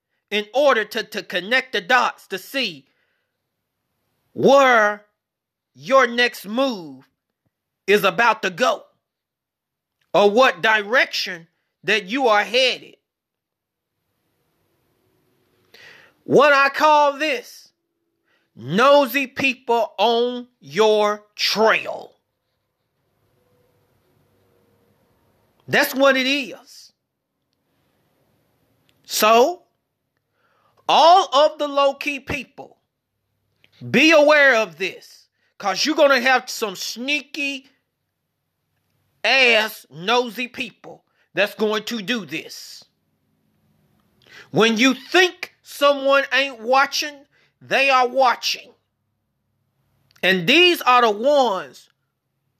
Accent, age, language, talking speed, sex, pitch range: American, 30-49, English, 85 wpm, male, 185-275 Hz